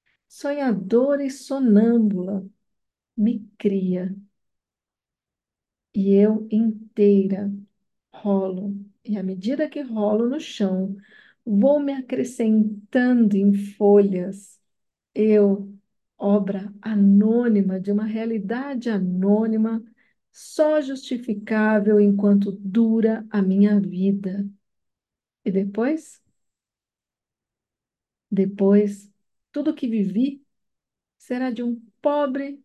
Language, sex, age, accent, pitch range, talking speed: Portuguese, female, 40-59, Brazilian, 200-235 Hz, 85 wpm